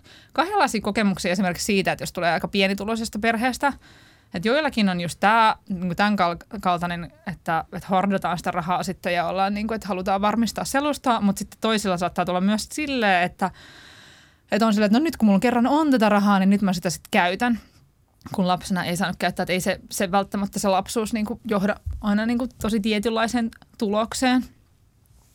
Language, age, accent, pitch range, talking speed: Finnish, 20-39, native, 185-230 Hz, 180 wpm